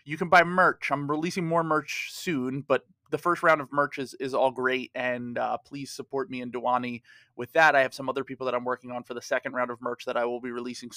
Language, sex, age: English, male, 30-49